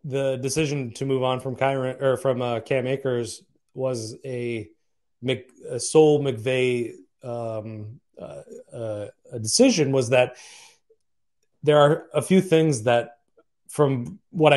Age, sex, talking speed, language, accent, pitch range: 30-49, male, 135 wpm, English, American, 115-135 Hz